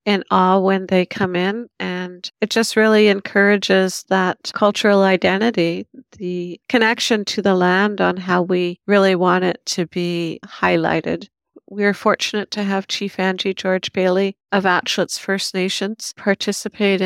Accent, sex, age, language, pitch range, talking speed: American, female, 50-69, English, 180-205 Hz, 145 wpm